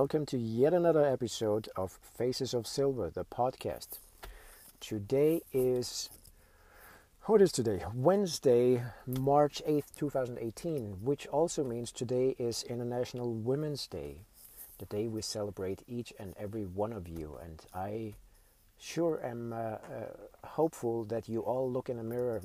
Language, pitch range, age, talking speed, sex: English, 100-130 Hz, 50-69, 145 wpm, male